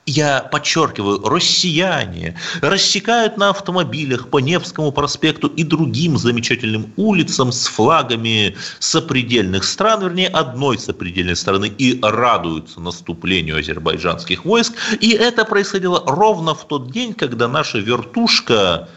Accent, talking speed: native, 115 wpm